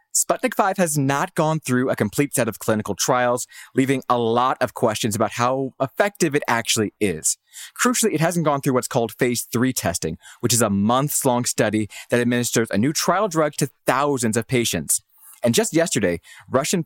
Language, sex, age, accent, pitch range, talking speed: English, male, 20-39, American, 115-170 Hz, 185 wpm